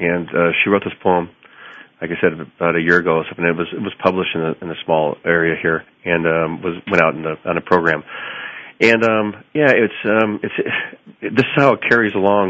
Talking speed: 245 wpm